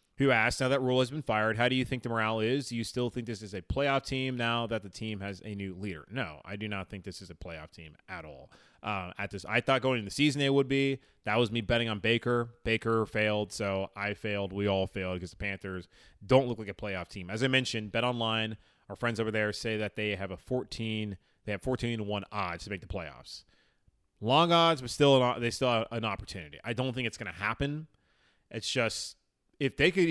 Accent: American